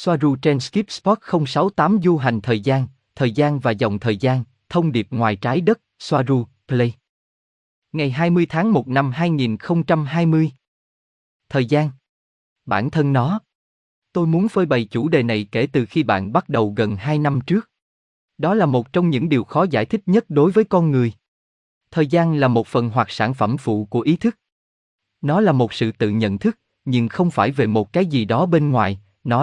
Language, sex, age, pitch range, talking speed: Vietnamese, male, 20-39, 110-170 Hz, 190 wpm